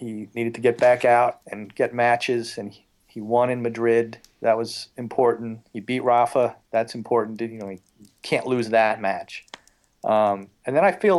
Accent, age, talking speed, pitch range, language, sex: American, 40-59, 180 wpm, 100-120 Hz, English, male